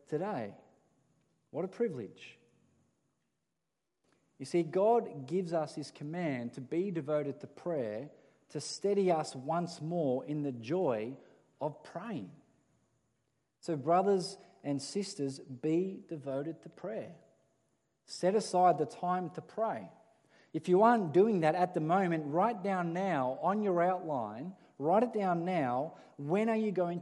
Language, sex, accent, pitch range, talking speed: English, male, Australian, 150-185 Hz, 140 wpm